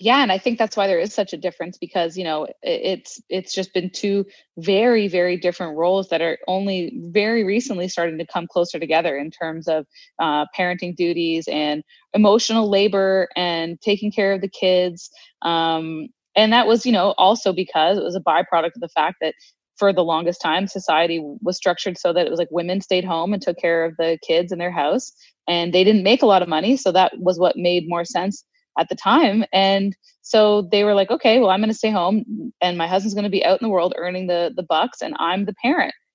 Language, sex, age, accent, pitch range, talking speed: English, female, 20-39, American, 175-210 Hz, 225 wpm